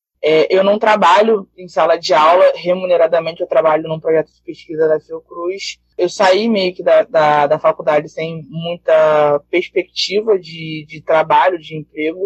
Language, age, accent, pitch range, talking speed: Portuguese, 20-39, Brazilian, 160-205 Hz, 160 wpm